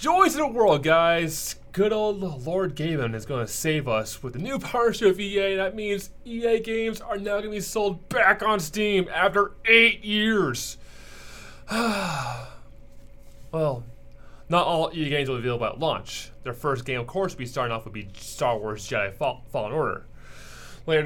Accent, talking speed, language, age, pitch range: American, 175 wpm, English, 30-49, 125-180 Hz